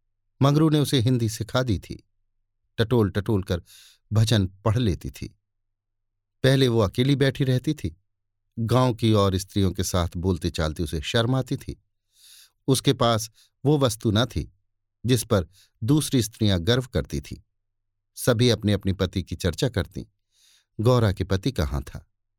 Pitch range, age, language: 100-125 Hz, 50-69, Hindi